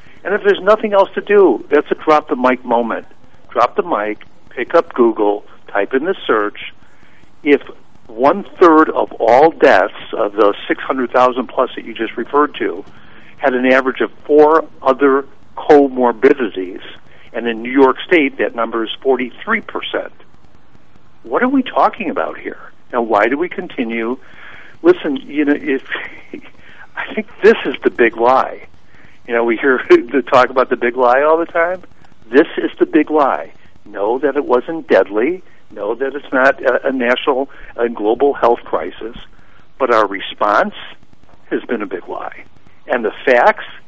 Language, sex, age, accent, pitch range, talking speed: English, male, 60-79, American, 120-170 Hz, 160 wpm